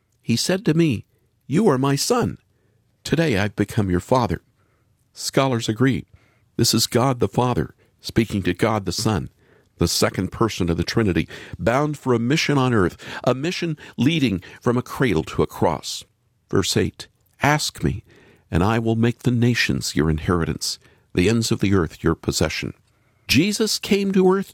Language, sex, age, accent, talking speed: English, male, 50-69, American, 170 wpm